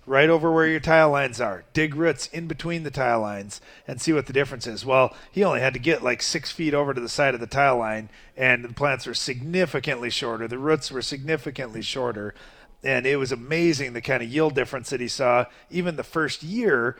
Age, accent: 40-59, American